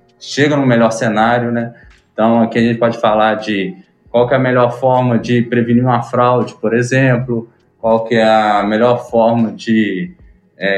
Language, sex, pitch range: Portuguese, male, 115-140 Hz